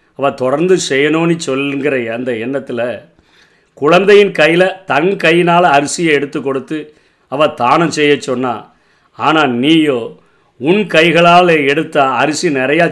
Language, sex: Tamil, male